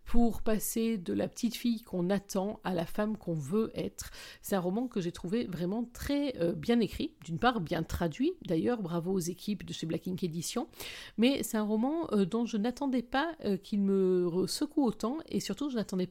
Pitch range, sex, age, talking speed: 185-235 Hz, female, 50-69, 210 wpm